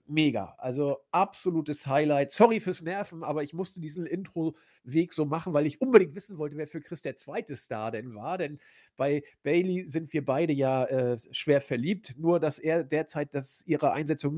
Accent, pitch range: German, 135-175 Hz